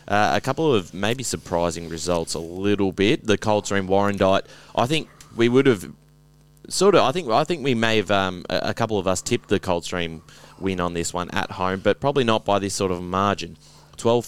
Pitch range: 90-105 Hz